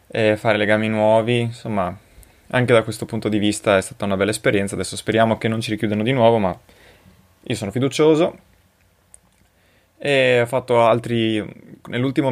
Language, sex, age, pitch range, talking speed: Italian, male, 20-39, 100-120 Hz, 160 wpm